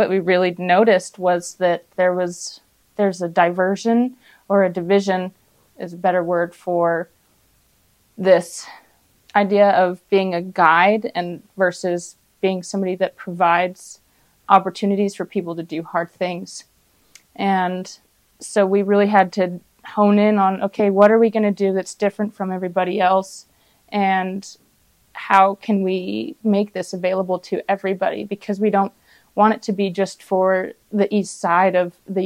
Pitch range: 185-205 Hz